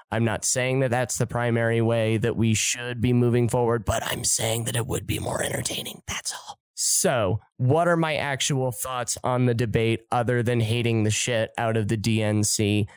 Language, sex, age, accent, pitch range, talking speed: English, male, 20-39, American, 115-145 Hz, 200 wpm